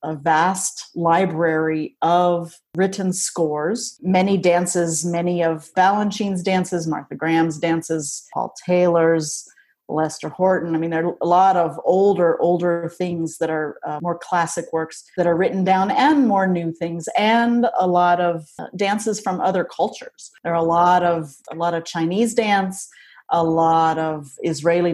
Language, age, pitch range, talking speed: English, 40-59, 165-190 Hz, 155 wpm